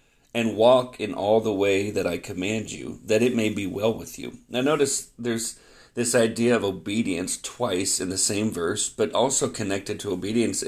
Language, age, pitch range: English, 40-59, 100-120 Hz